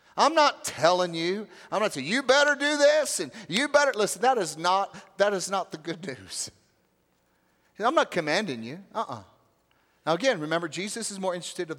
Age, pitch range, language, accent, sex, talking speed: 40-59, 155-235 Hz, English, American, male, 195 wpm